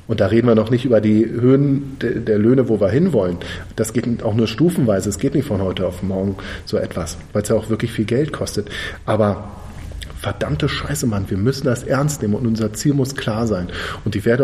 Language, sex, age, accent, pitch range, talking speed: German, male, 40-59, German, 105-120 Hz, 225 wpm